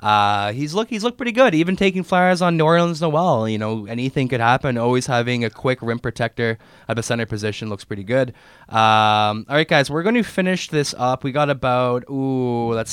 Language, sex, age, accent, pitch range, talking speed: English, male, 20-39, American, 115-145 Hz, 215 wpm